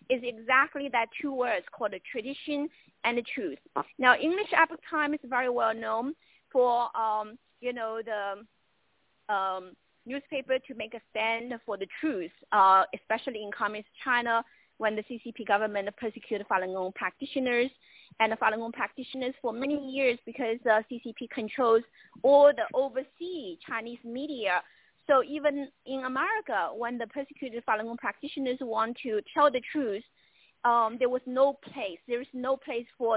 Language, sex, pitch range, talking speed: English, female, 225-275 Hz, 160 wpm